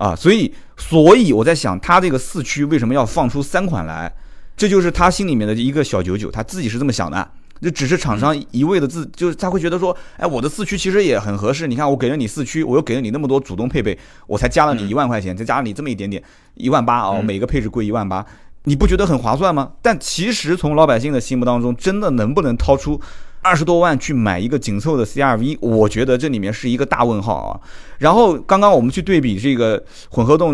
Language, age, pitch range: Chinese, 30-49, 110-165 Hz